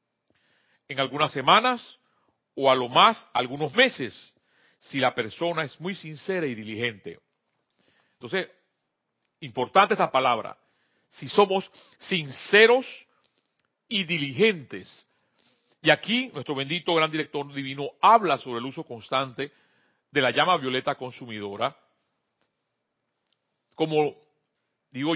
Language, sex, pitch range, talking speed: Spanish, male, 130-185 Hz, 105 wpm